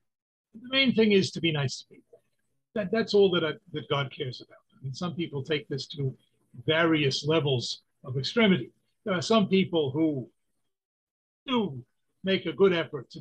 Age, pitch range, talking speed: 50-69, 145-195 Hz, 180 wpm